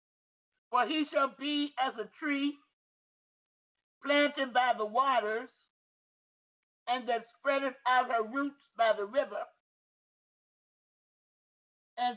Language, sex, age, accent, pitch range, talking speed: English, male, 50-69, American, 240-295 Hz, 105 wpm